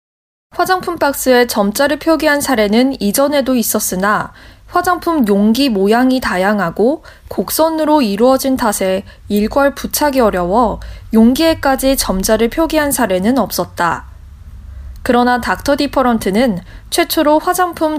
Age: 20-39